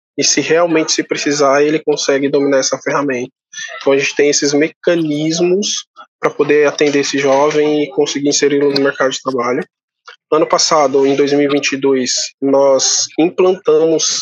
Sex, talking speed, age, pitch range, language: male, 145 wpm, 20-39, 140-175 Hz, Portuguese